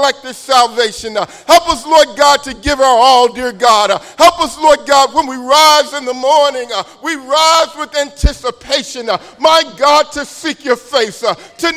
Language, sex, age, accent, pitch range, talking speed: English, male, 50-69, American, 230-305 Hz, 175 wpm